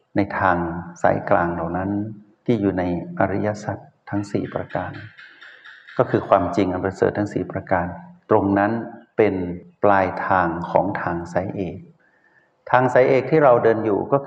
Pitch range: 95-115 Hz